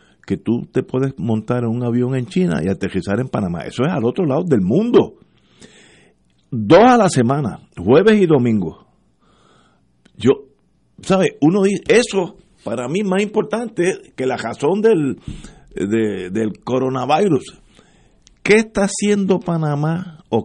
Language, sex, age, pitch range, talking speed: Spanish, male, 50-69, 110-165 Hz, 145 wpm